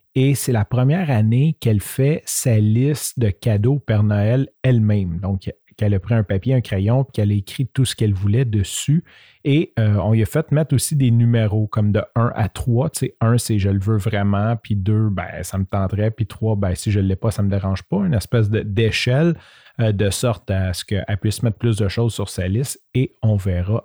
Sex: male